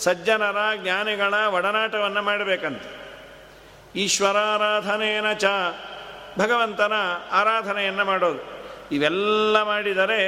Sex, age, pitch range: male, 50-69, 175-210 Hz